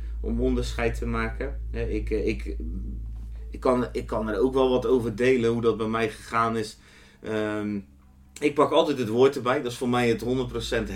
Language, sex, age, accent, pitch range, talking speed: Dutch, male, 30-49, Dutch, 95-115 Hz, 190 wpm